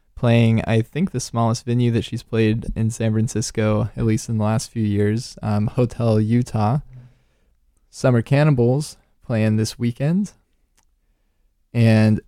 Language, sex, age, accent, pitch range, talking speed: English, male, 20-39, American, 105-120 Hz, 135 wpm